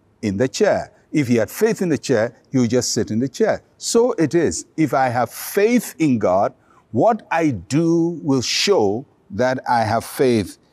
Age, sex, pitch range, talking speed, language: 60-79, male, 125-165 Hz, 195 wpm, English